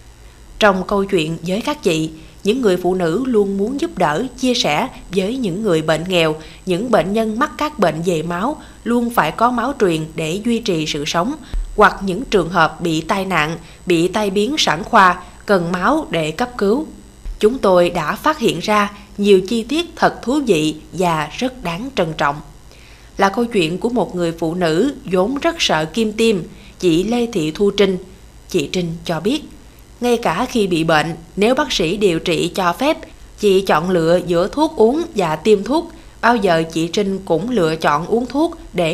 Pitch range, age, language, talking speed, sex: 170-230 Hz, 20-39, Vietnamese, 195 wpm, female